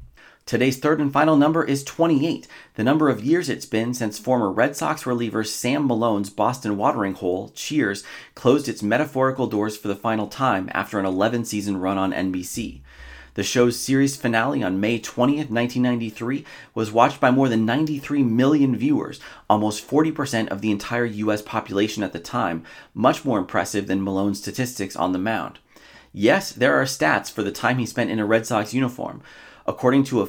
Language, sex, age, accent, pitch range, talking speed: English, male, 30-49, American, 105-130 Hz, 180 wpm